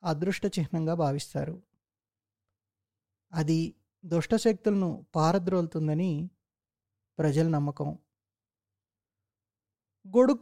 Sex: male